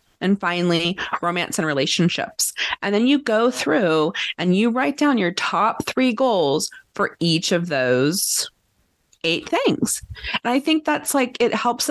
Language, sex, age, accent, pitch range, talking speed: English, female, 30-49, American, 170-230 Hz, 155 wpm